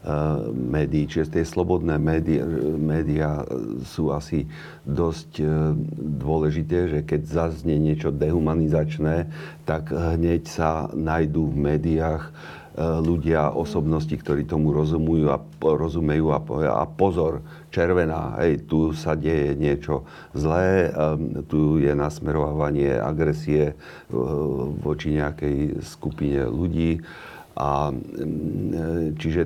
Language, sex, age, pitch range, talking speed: Slovak, male, 50-69, 75-80 Hz, 95 wpm